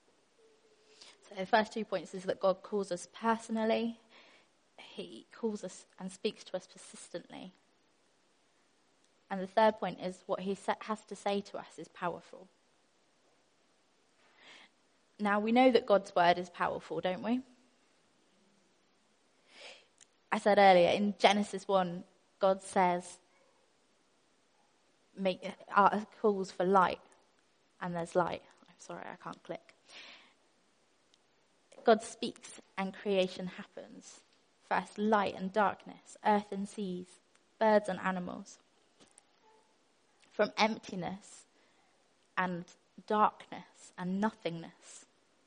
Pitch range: 185-215 Hz